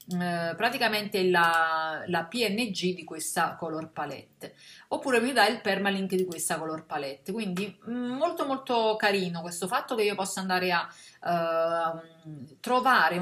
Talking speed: 135 wpm